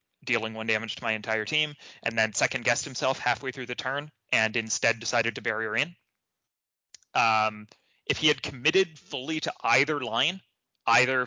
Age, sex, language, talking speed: 20-39, male, English, 165 wpm